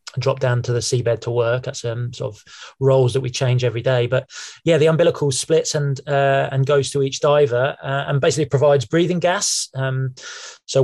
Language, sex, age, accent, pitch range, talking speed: English, male, 20-39, British, 125-145 Hz, 215 wpm